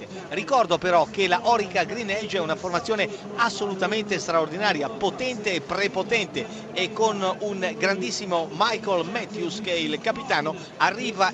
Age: 50-69